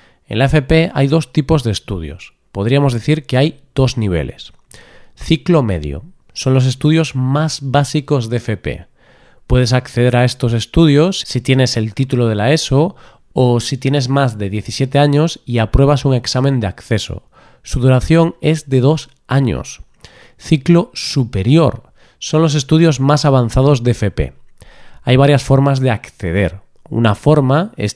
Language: Spanish